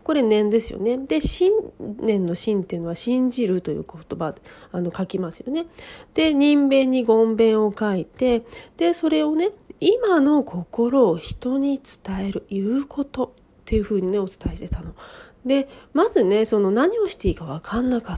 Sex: female